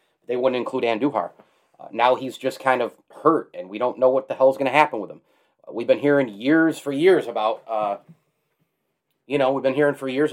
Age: 30-49